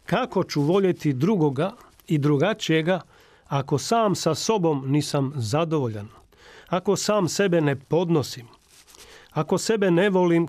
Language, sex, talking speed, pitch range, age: Croatian, male, 120 wpm, 140-180 Hz, 40-59